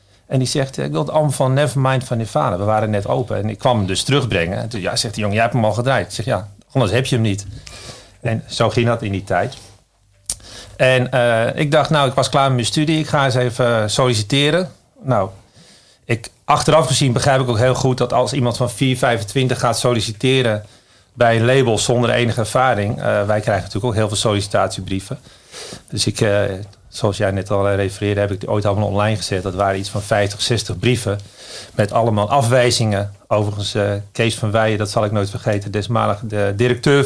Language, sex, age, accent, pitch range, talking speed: Dutch, male, 40-59, Dutch, 105-125 Hz, 210 wpm